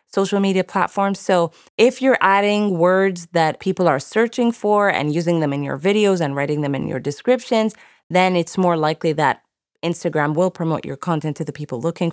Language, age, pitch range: English, 20-39, 150-200 Hz